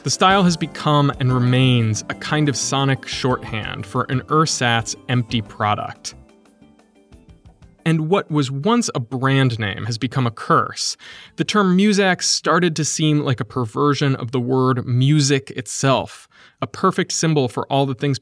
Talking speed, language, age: 160 wpm, English, 20-39